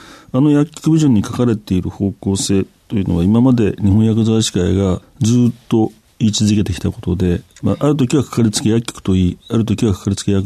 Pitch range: 95-130 Hz